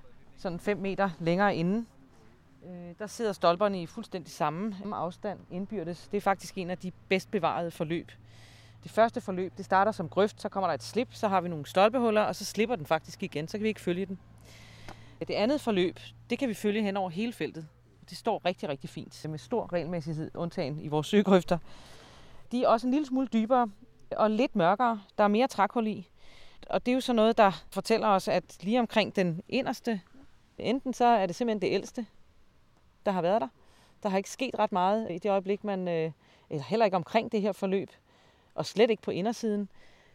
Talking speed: 205 wpm